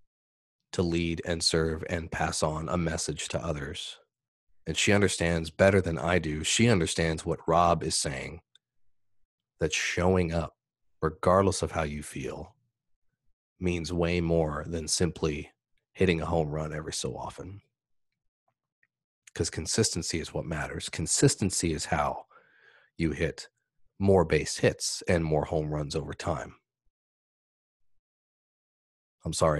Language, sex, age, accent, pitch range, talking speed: English, male, 30-49, American, 80-95 Hz, 130 wpm